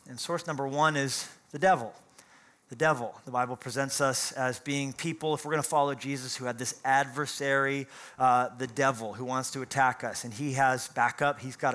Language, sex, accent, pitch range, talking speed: English, male, American, 130-150 Hz, 205 wpm